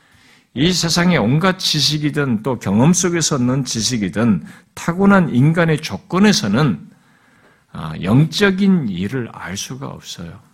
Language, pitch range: Korean, 135-195 Hz